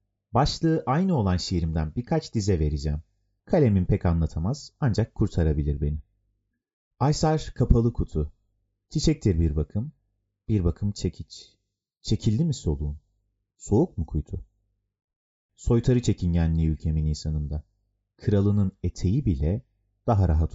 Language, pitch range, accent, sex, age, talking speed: Turkish, 85-120 Hz, native, male, 30-49, 110 wpm